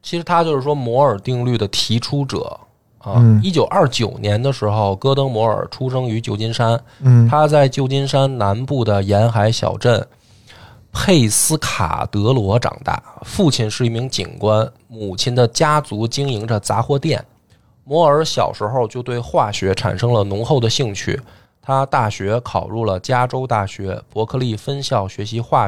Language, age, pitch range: Chinese, 20-39, 105-135 Hz